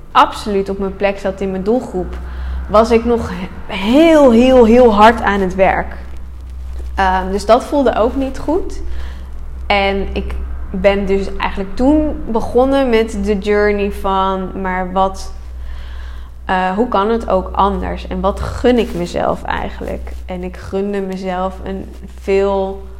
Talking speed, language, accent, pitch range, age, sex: 145 wpm, Dutch, Dutch, 180-225 Hz, 20-39, female